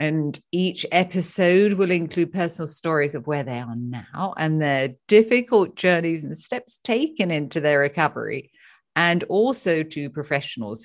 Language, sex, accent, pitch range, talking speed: English, female, British, 140-190 Hz, 145 wpm